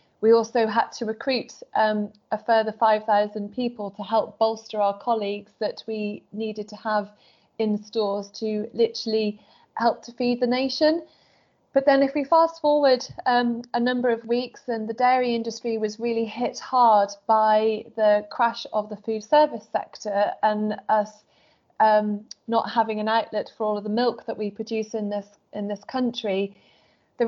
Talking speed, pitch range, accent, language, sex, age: 170 wpm, 210-235 Hz, British, English, female, 30-49